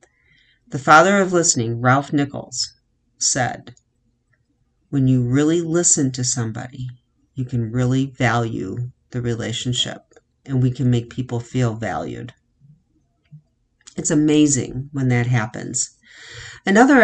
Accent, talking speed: American, 115 wpm